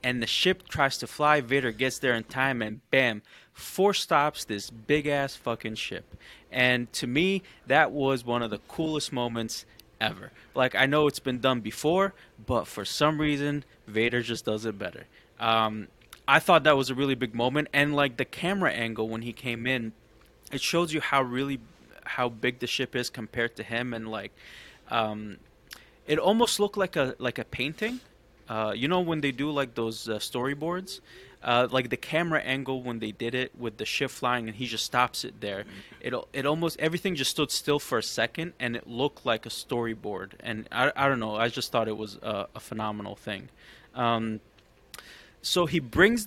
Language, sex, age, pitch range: English, male, 20-39, 115-150 Hz